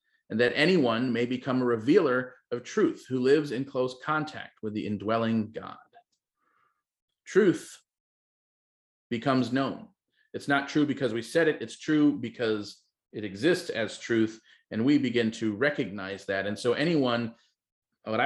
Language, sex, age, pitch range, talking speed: English, male, 40-59, 110-145 Hz, 150 wpm